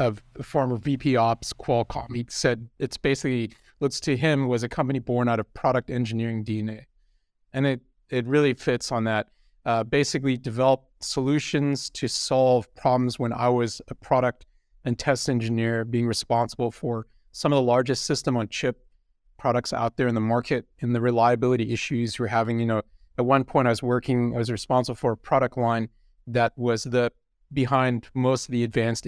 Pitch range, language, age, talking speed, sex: 115-130 Hz, English, 40-59, 180 wpm, male